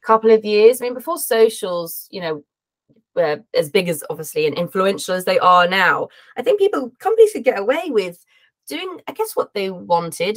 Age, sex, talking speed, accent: 20-39, female, 195 wpm, British